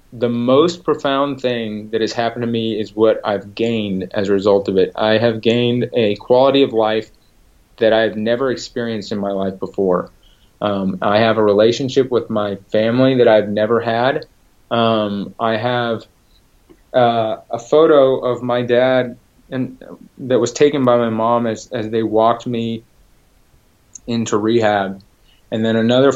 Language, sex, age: English, male, 30-49